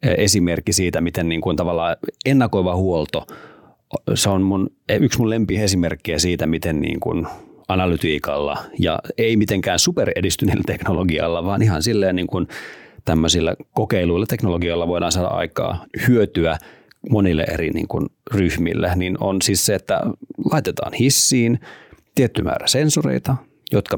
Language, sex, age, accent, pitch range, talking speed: Finnish, male, 40-59, native, 90-115 Hz, 130 wpm